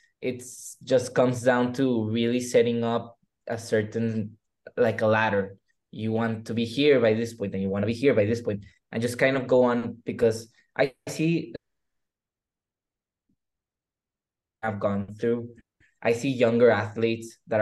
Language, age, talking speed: English, 20-39, 165 wpm